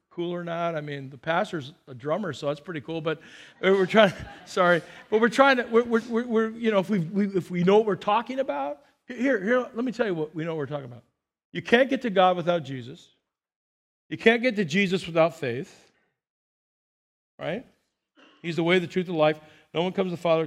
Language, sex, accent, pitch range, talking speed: English, male, American, 165-225 Hz, 225 wpm